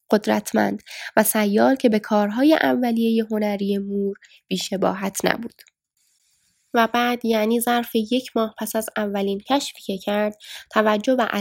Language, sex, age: Persian, female, 10-29